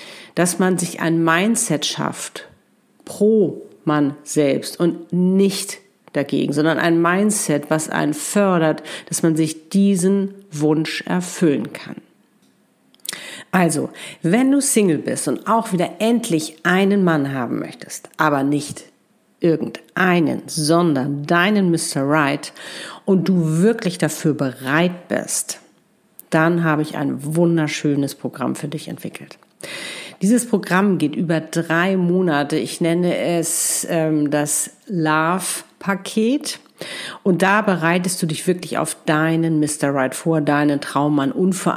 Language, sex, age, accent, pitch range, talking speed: German, female, 50-69, German, 150-185 Hz, 125 wpm